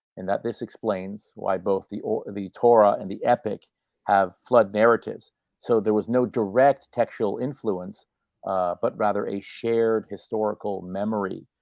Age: 50-69